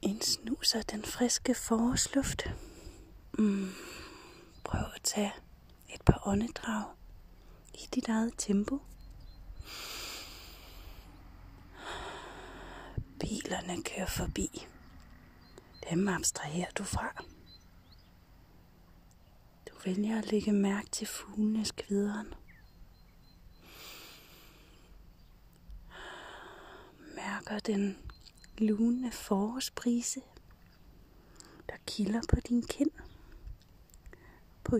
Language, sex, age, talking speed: Danish, female, 30-49, 70 wpm